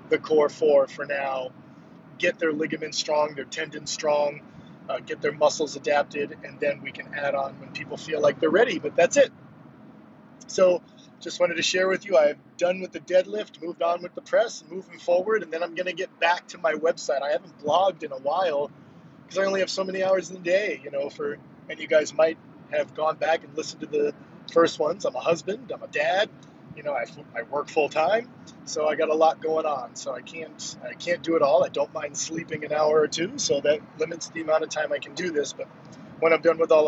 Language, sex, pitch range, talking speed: English, male, 150-185 Hz, 235 wpm